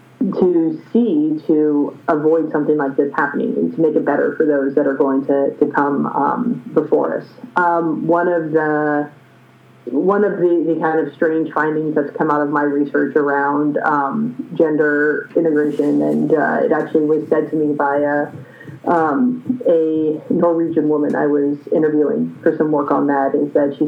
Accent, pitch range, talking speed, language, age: American, 150-170 Hz, 180 wpm, English, 30-49